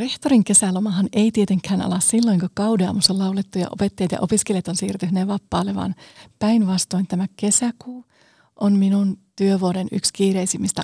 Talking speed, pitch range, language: 140 wpm, 180-215 Hz, Finnish